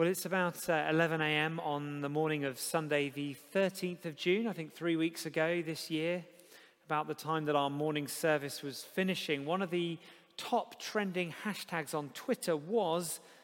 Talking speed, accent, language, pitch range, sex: 180 wpm, British, English, 150-195 Hz, male